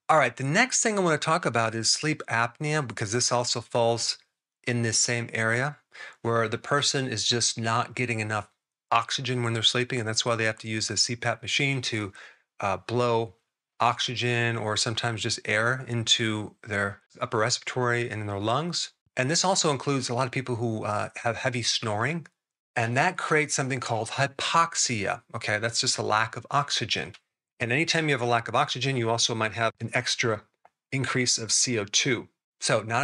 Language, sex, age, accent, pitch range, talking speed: English, male, 40-59, American, 115-135 Hz, 190 wpm